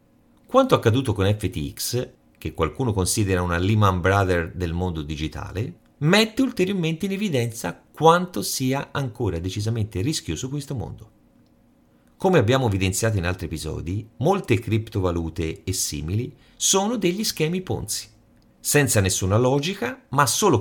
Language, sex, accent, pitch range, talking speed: Italian, male, native, 95-135 Hz, 125 wpm